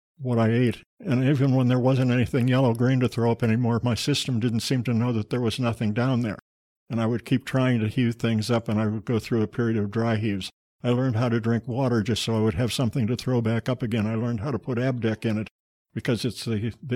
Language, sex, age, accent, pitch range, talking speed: English, male, 60-79, American, 110-125 Hz, 260 wpm